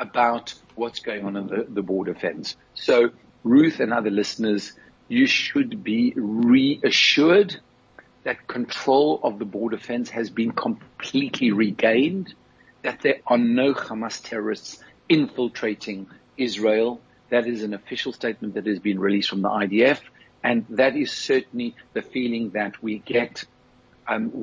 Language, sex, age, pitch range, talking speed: English, male, 50-69, 110-130 Hz, 145 wpm